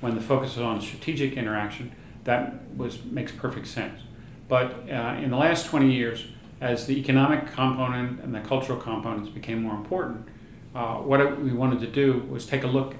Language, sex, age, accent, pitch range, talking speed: English, male, 40-59, American, 110-130 Hz, 190 wpm